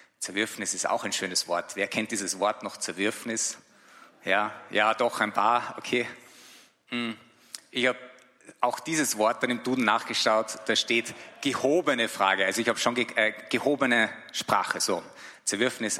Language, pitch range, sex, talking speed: English, 115-135 Hz, male, 155 wpm